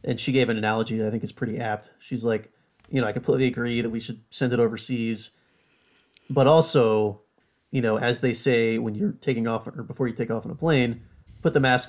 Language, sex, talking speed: English, male, 230 wpm